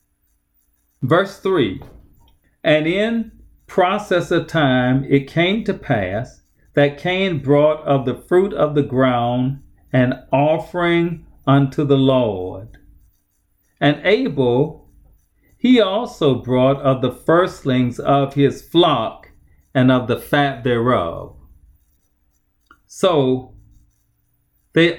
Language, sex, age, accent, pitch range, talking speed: English, male, 40-59, American, 100-155 Hz, 105 wpm